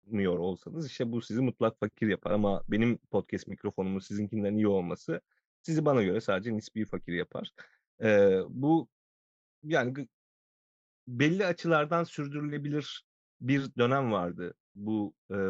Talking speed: 125 wpm